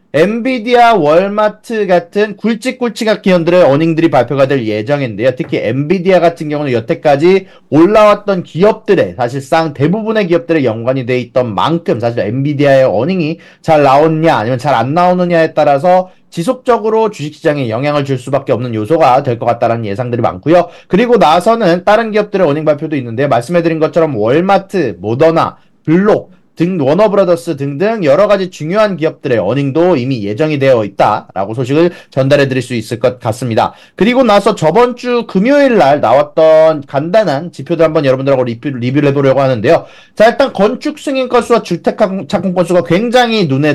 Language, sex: Korean, male